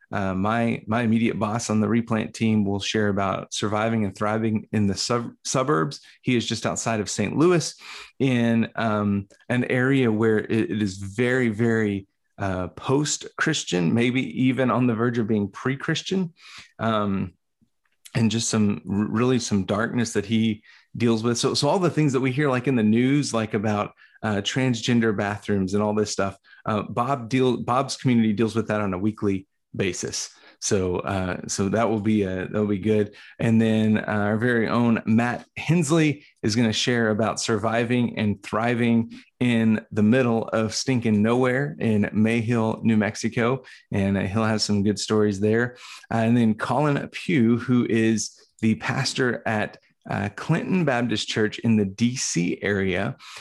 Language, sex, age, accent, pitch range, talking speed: English, male, 30-49, American, 105-120 Hz, 170 wpm